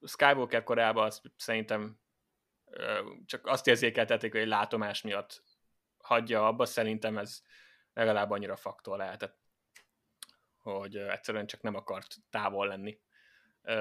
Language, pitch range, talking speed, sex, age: Hungarian, 105-115 Hz, 110 wpm, male, 20-39